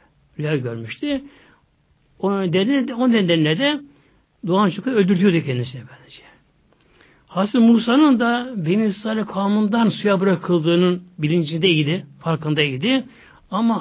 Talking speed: 95 wpm